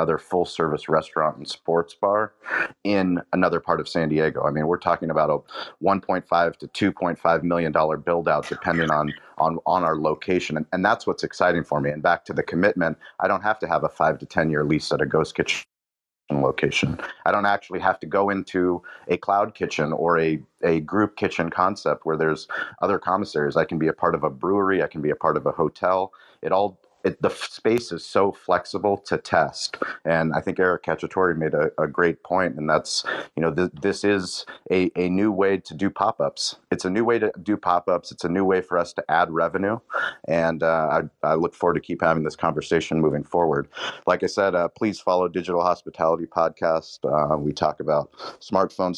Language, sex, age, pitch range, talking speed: English, male, 30-49, 80-95 Hz, 210 wpm